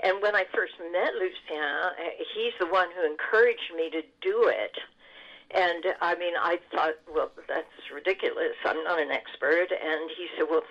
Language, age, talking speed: English, 60-79, 175 wpm